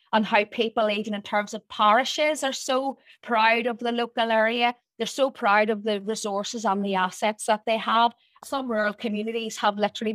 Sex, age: female, 30-49